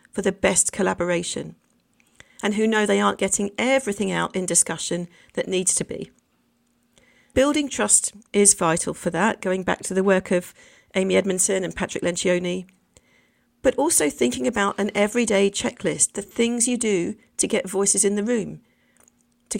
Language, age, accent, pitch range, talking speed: English, 40-59, British, 185-215 Hz, 160 wpm